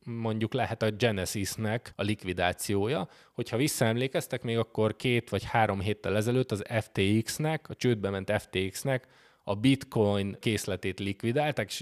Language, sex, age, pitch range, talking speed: Hungarian, male, 20-39, 100-125 Hz, 130 wpm